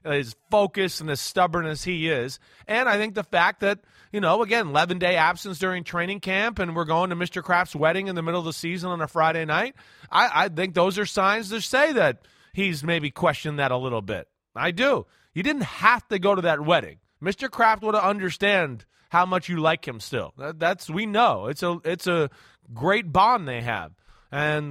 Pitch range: 150-195 Hz